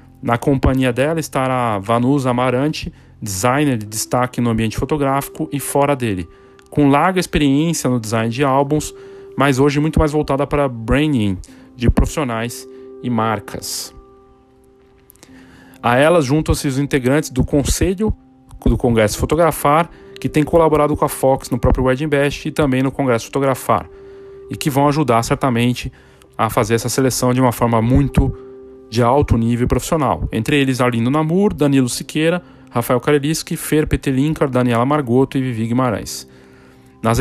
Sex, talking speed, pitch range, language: male, 145 wpm, 120-150 Hz, Portuguese